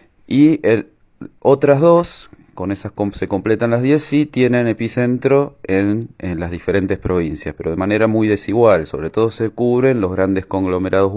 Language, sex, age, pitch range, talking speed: Spanish, male, 30-49, 95-110 Hz, 165 wpm